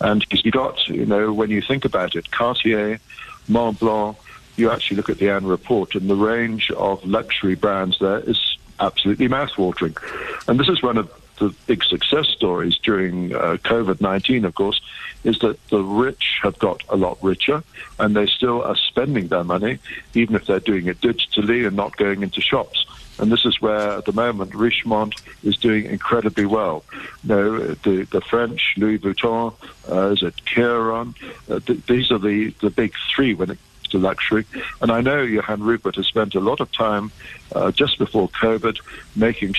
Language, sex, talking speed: English, male, 185 wpm